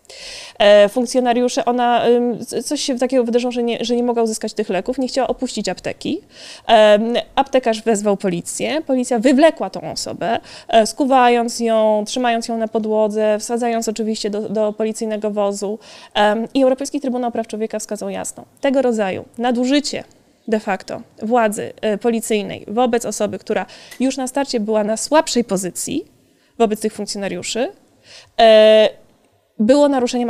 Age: 20-39